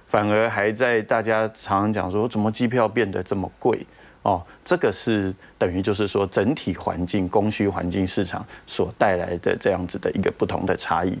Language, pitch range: Chinese, 90-115 Hz